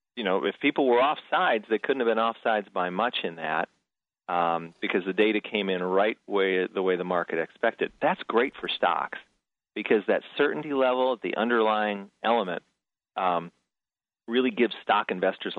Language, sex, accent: English, male, American